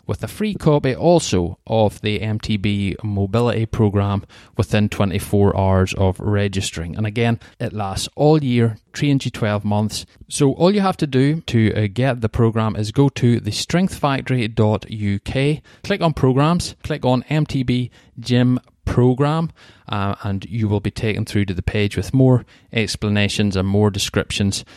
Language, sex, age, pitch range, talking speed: English, male, 20-39, 100-125 Hz, 150 wpm